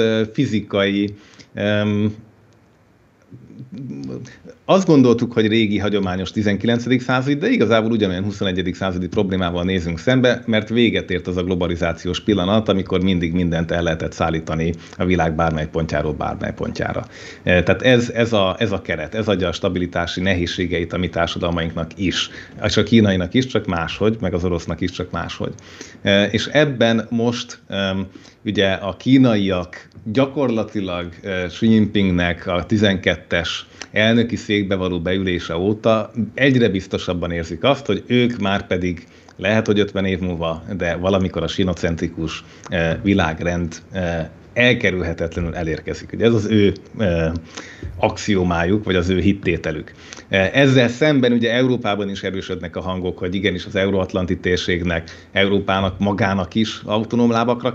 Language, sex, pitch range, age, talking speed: Hungarian, male, 90-110 Hz, 30-49, 135 wpm